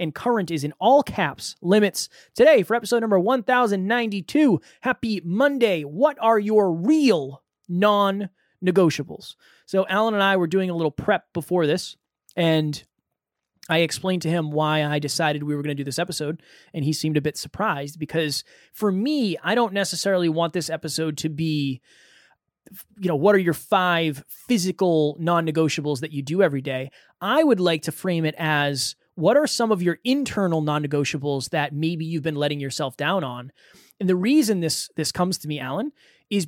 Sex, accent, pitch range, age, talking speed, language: male, American, 150-200 Hz, 20-39, 175 wpm, English